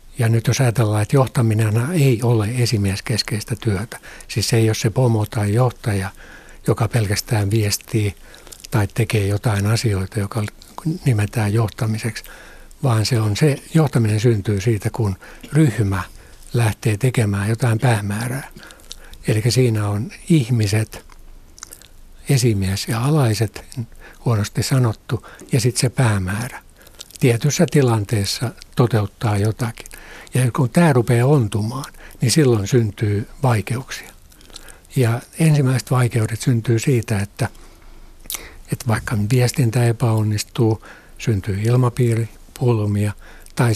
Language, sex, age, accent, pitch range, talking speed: Finnish, male, 60-79, native, 105-125 Hz, 110 wpm